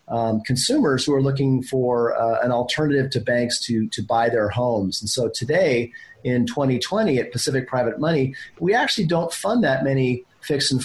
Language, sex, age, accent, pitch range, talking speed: English, male, 40-59, American, 120-150 Hz, 185 wpm